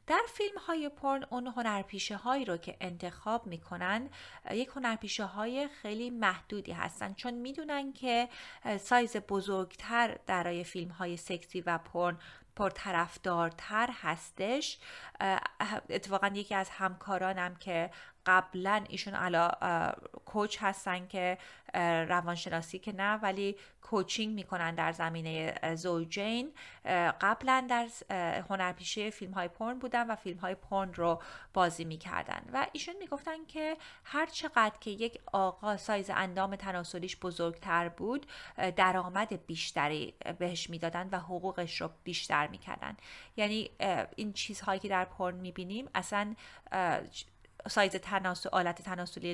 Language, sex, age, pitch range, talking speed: Persian, female, 30-49, 175-215 Hz, 125 wpm